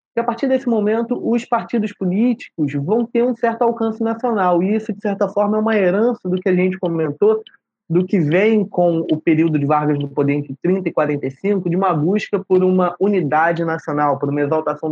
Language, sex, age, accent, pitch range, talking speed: Portuguese, male, 20-39, Brazilian, 155-215 Hz, 200 wpm